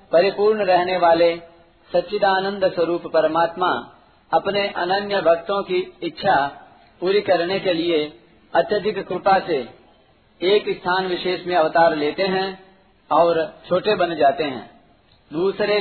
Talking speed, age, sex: 120 wpm, 50-69, male